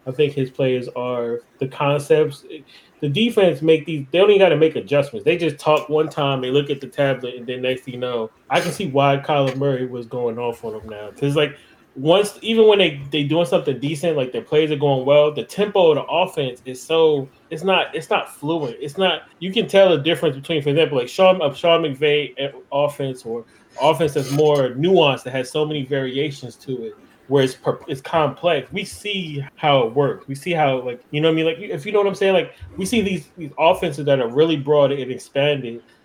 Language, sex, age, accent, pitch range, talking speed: English, male, 20-39, American, 130-165 Hz, 225 wpm